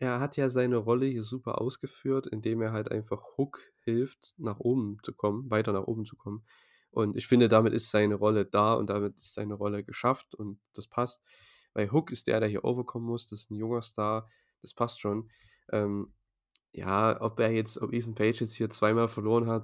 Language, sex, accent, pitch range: German, male, German, 105-120 Hz